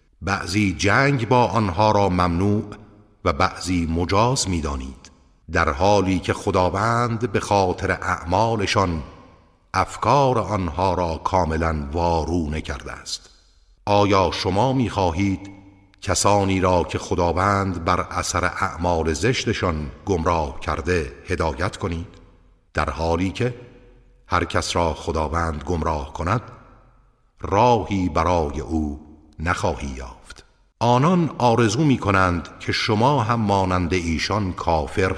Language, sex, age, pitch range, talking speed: Persian, male, 50-69, 80-110 Hz, 110 wpm